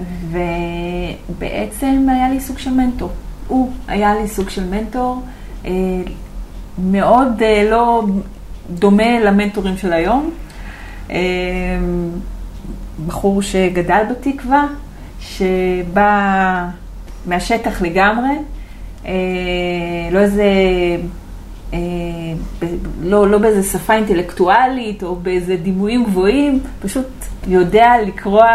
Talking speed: 85 wpm